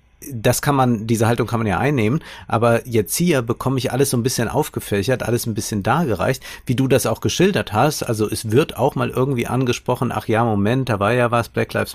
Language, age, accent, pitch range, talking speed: German, 50-69, German, 110-130 Hz, 225 wpm